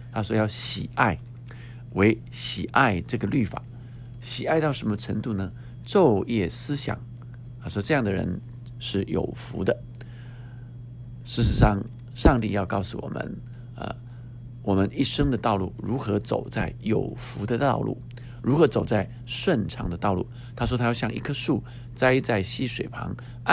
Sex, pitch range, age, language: male, 115-125 Hz, 50-69, Chinese